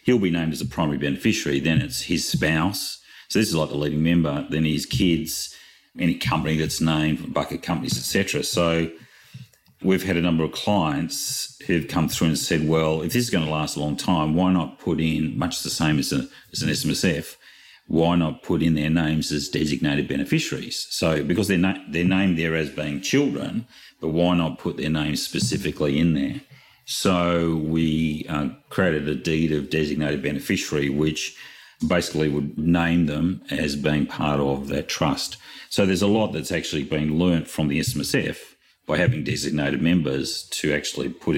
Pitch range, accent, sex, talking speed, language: 75-85 Hz, Australian, male, 190 wpm, English